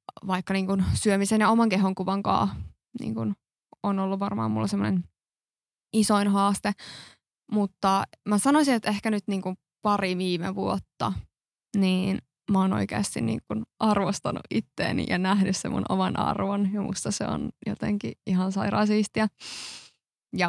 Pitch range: 185-205 Hz